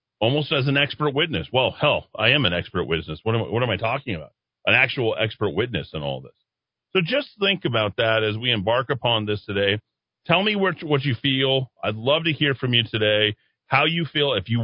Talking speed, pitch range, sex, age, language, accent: 215 wpm, 115-155 Hz, male, 40-59, English, American